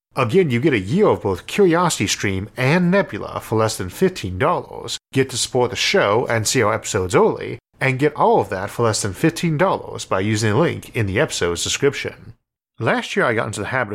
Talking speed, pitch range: 210 wpm, 100-135 Hz